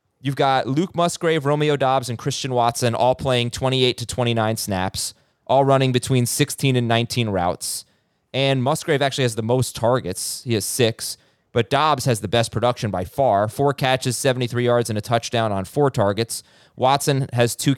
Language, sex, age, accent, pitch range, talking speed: English, male, 30-49, American, 110-135 Hz, 180 wpm